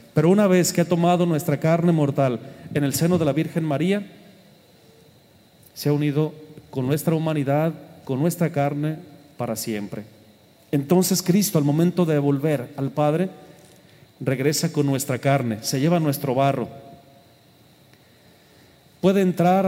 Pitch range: 130-165 Hz